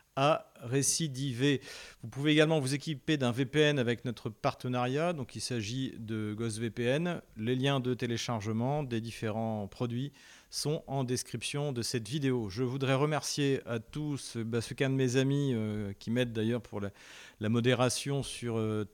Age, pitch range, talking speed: 40-59, 120-140 Hz, 160 wpm